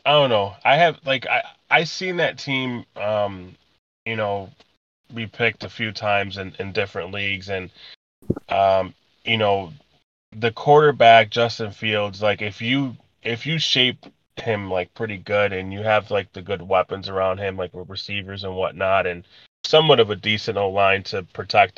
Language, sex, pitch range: English, male, 95-115 Hz